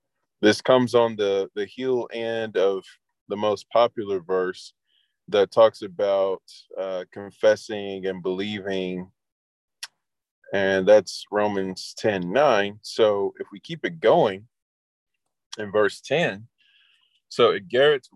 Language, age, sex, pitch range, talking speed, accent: English, 20-39, male, 95-125 Hz, 120 wpm, American